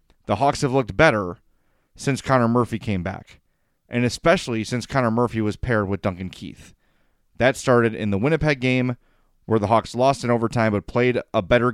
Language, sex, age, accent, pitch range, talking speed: English, male, 30-49, American, 105-130 Hz, 185 wpm